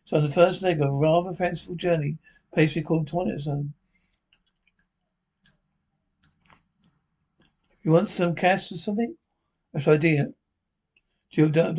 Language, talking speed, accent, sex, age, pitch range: English, 130 wpm, British, male, 60-79, 155-180 Hz